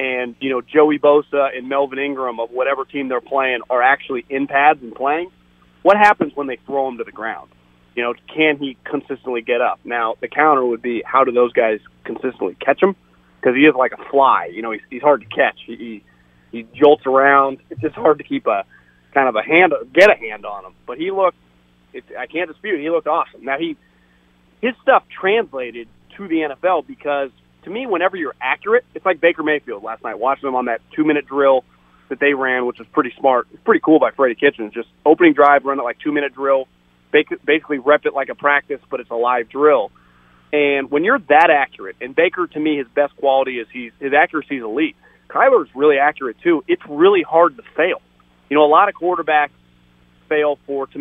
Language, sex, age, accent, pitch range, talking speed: English, male, 30-49, American, 120-150 Hz, 215 wpm